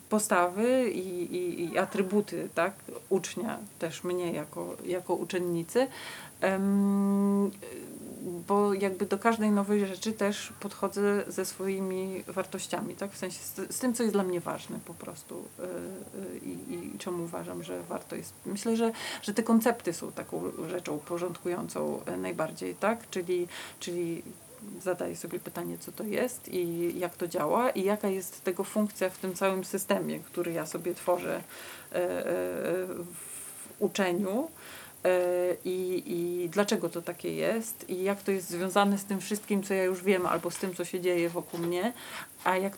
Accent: native